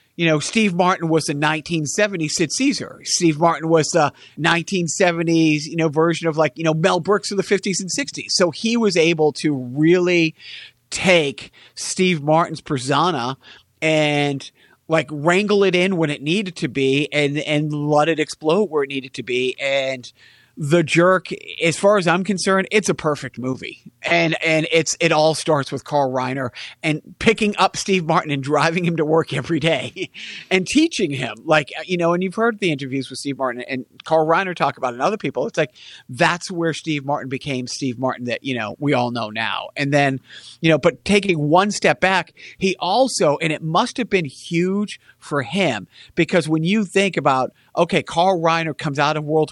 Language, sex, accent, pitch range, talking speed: English, male, American, 140-180 Hz, 195 wpm